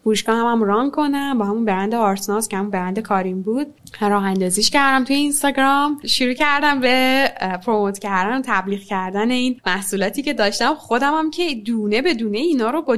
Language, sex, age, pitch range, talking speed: Persian, female, 10-29, 200-275 Hz, 175 wpm